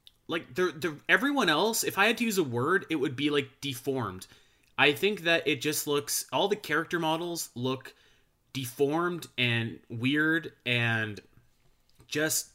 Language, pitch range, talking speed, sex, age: English, 120-150 Hz, 160 wpm, male, 20-39